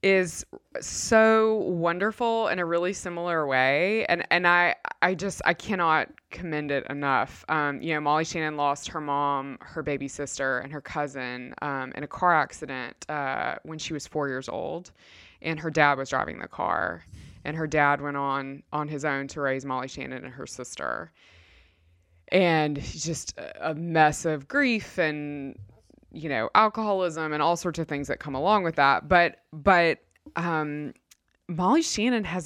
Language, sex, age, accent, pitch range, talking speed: English, female, 20-39, American, 145-175 Hz, 170 wpm